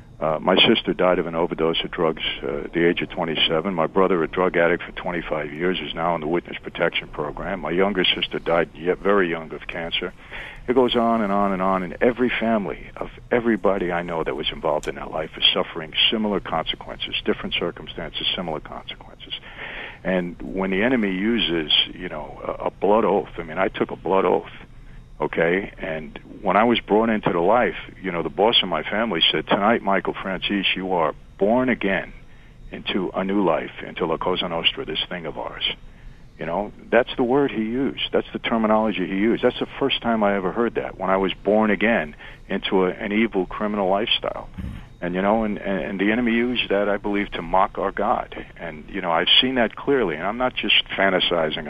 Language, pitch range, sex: English, 90-115 Hz, male